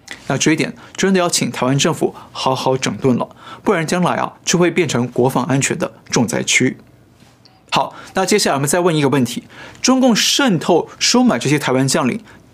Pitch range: 140-195 Hz